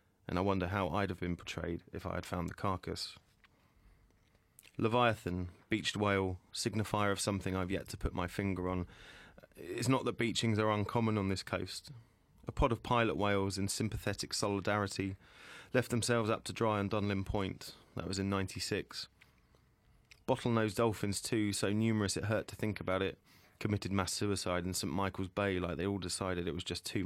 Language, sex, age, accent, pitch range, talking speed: English, male, 30-49, British, 90-105 Hz, 180 wpm